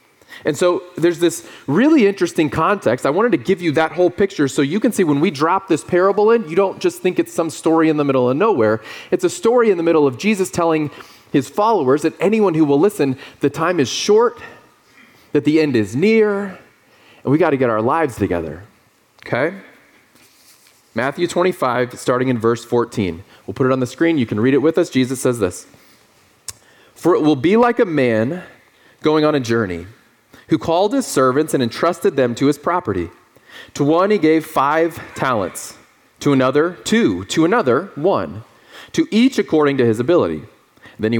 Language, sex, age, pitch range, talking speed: English, male, 30-49, 125-180 Hz, 195 wpm